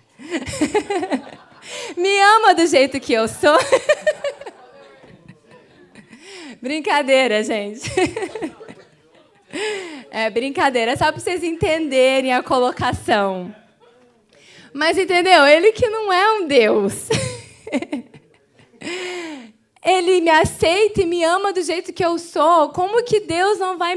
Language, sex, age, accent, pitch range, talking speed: Portuguese, female, 20-39, Brazilian, 240-350 Hz, 105 wpm